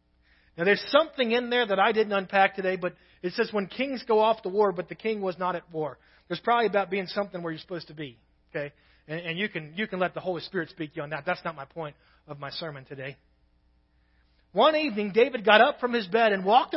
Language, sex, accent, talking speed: English, male, American, 245 wpm